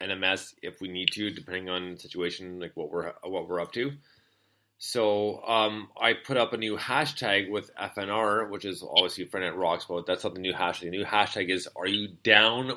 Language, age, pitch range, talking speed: English, 20-39, 95-110 Hz, 210 wpm